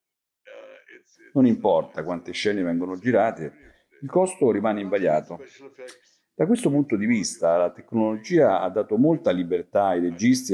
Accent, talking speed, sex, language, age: native, 130 wpm, male, Italian, 50-69